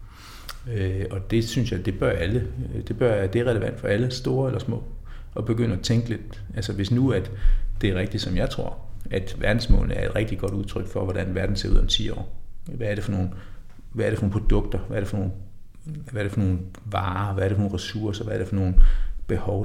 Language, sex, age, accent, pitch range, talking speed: Danish, male, 60-79, native, 95-110 Hz, 215 wpm